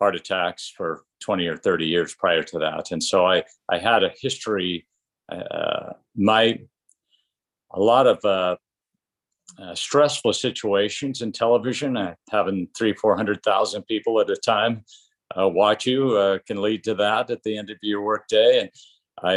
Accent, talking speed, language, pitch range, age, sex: American, 165 wpm, English, 95-120 Hz, 50-69, male